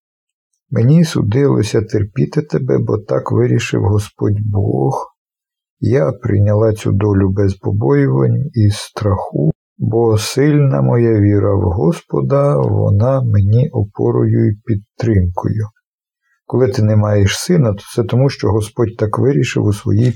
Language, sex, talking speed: Ukrainian, male, 125 wpm